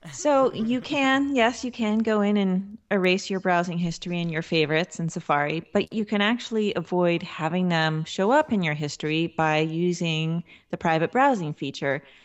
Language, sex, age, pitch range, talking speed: English, female, 30-49, 155-200 Hz, 175 wpm